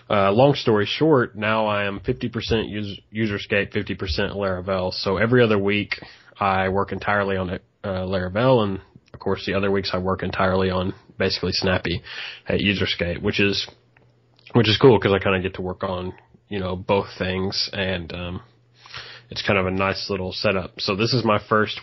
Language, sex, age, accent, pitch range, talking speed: English, male, 20-39, American, 95-105 Hz, 185 wpm